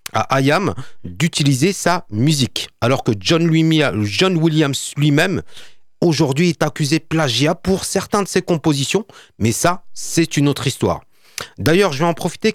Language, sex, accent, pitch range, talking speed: French, male, French, 120-165 Hz, 160 wpm